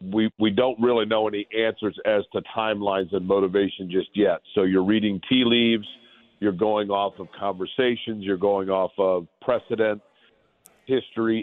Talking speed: 160 wpm